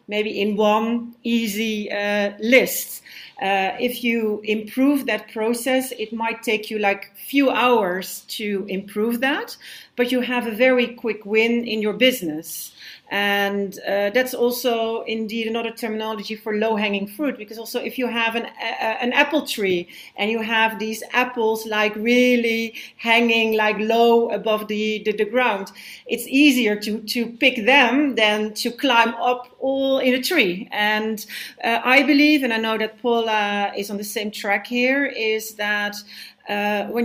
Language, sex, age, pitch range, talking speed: English, female, 40-59, 210-245 Hz, 165 wpm